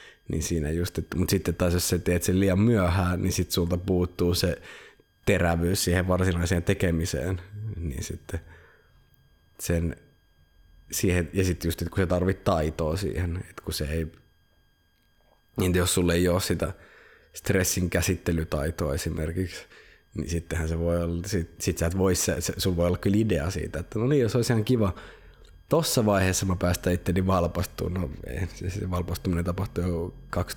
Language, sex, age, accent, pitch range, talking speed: Finnish, male, 20-39, native, 85-95 Hz, 150 wpm